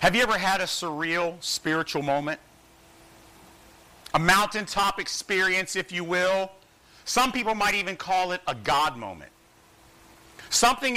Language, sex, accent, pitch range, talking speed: English, male, American, 180-230 Hz, 130 wpm